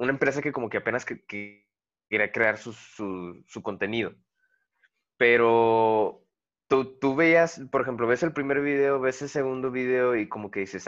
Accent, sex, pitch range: Mexican, male, 110-140 Hz